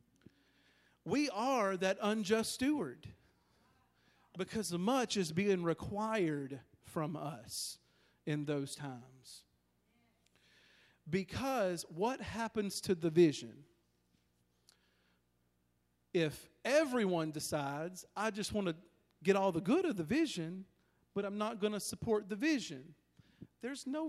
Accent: American